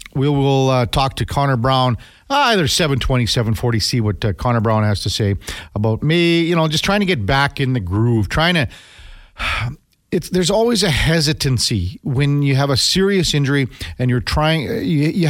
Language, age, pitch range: English, 40-59, 110-160 Hz